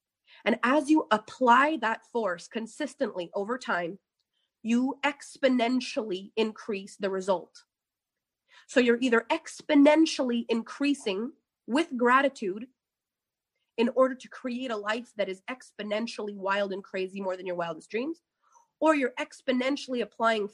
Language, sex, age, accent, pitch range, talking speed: English, female, 30-49, American, 205-270 Hz, 125 wpm